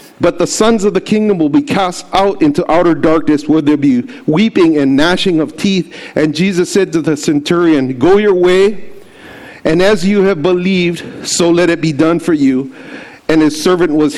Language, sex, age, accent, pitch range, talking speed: English, male, 40-59, American, 160-205 Hz, 200 wpm